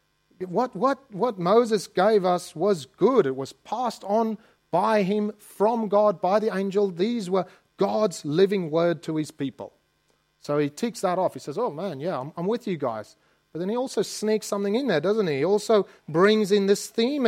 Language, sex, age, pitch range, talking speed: English, male, 40-59, 150-210 Hz, 200 wpm